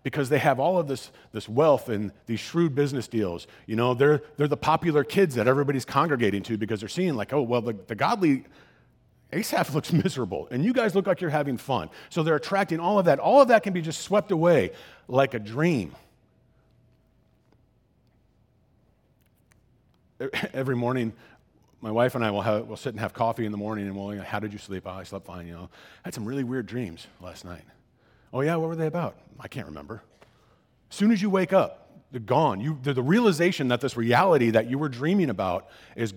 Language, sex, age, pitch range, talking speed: English, male, 40-59, 110-160 Hz, 215 wpm